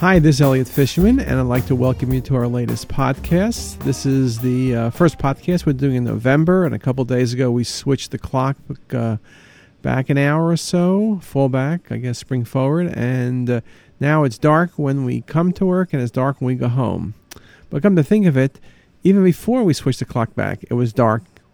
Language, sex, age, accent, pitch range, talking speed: English, male, 50-69, American, 125-160 Hz, 220 wpm